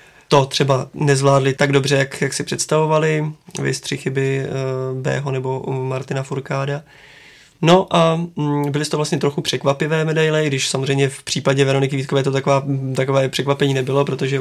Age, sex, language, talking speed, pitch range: 20-39, male, Czech, 145 wpm, 135-150 Hz